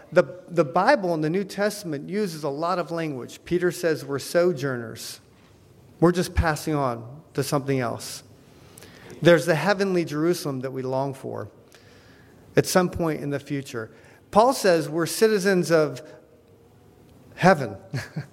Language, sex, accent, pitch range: English, male, American, 140-180 Hz